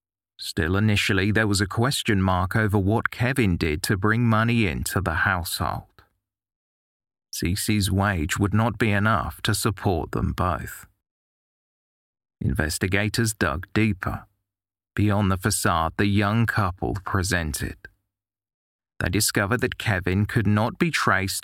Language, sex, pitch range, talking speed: English, male, 95-110 Hz, 125 wpm